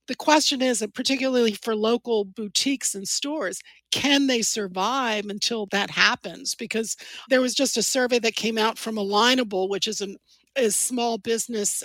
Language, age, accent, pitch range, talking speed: English, 50-69, American, 215-285 Hz, 155 wpm